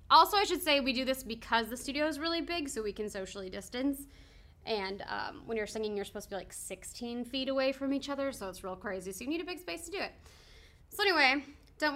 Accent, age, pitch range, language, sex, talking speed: American, 20-39, 210-280 Hz, English, female, 250 wpm